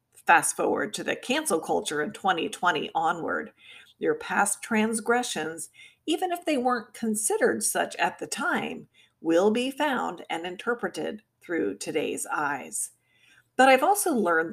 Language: English